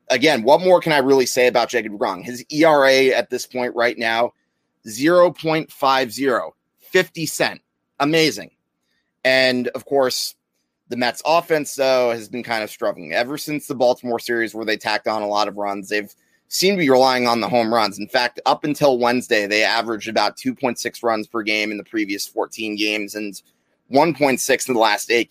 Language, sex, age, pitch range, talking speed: English, male, 30-49, 110-135 Hz, 185 wpm